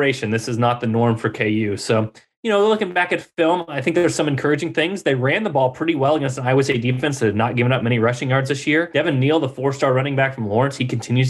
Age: 20-39